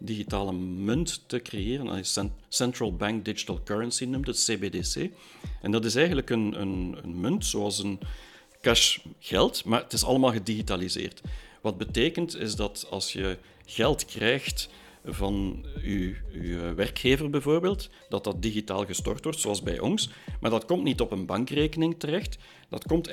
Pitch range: 95-125 Hz